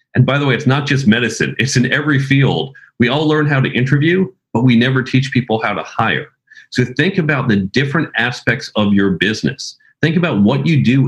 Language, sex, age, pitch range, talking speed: English, male, 40-59, 100-135 Hz, 215 wpm